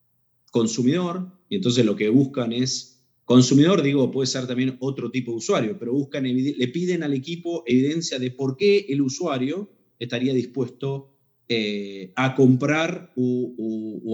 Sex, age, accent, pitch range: male, 30-49, Argentinian, 125-150 Hz